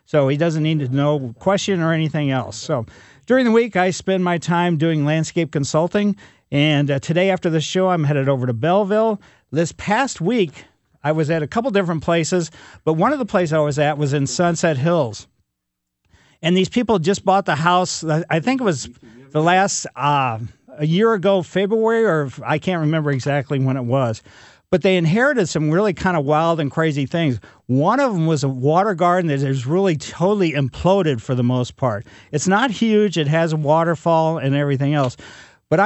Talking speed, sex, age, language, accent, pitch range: 195 wpm, male, 50-69, English, American, 140-185 Hz